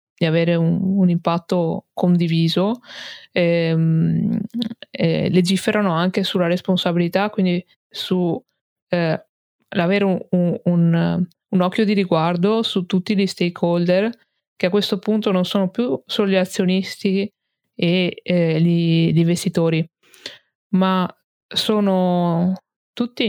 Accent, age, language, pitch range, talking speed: native, 20-39, Italian, 170-190 Hz, 110 wpm